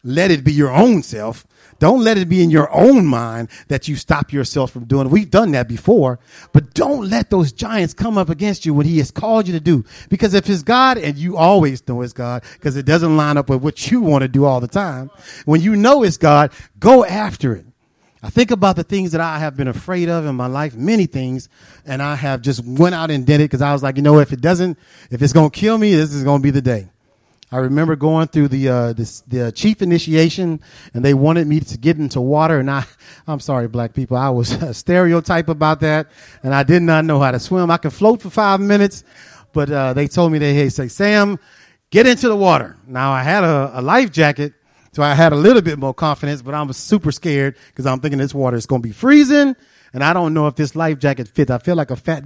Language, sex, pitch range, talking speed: English, male, 135-175 Hz, 250 wpm